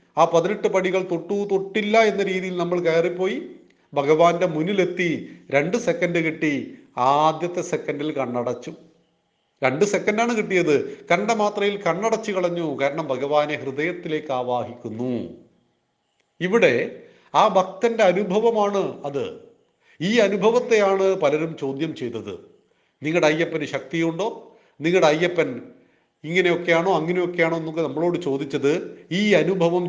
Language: Malayalam